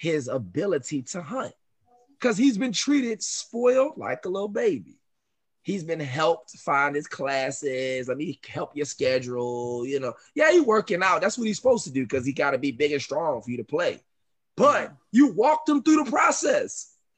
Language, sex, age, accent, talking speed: English, male, 20-39, American, 190 wpm